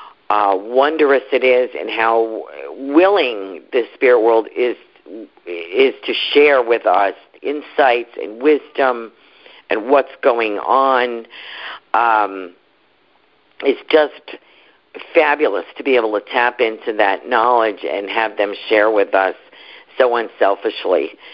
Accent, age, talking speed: American, 50-69, 120 wpm